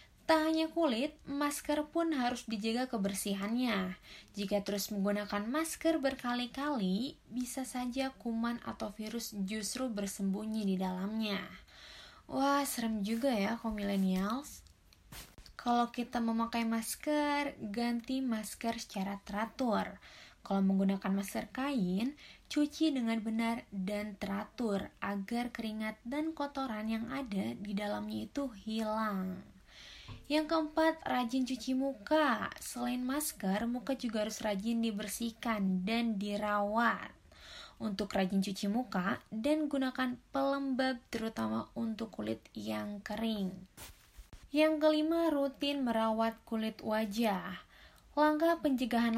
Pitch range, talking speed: 205-265 Hz, 110 wpm